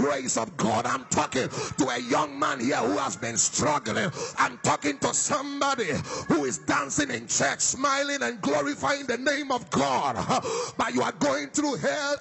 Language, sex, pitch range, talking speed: English, male, 220-285 Hz, 175 wpm